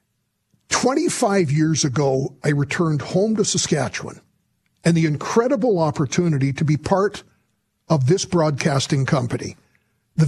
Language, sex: English, male